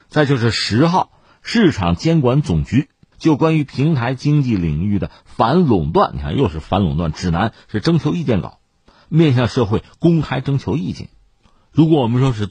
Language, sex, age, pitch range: Chinese, male, 50-69, 85-140 Hz